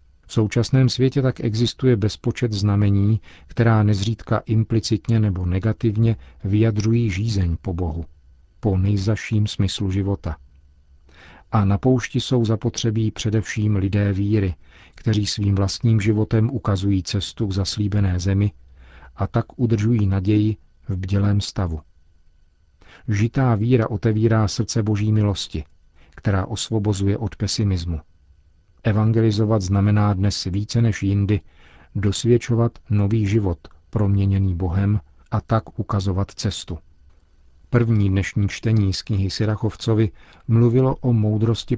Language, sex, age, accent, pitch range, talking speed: Czech, male, 50-69, native, 95-110 Hz, 110 wpm